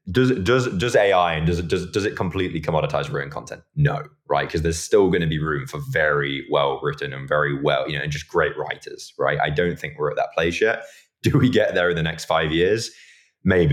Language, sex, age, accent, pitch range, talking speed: English, male, 20-39, British, 75-95 Hz, 235 wpm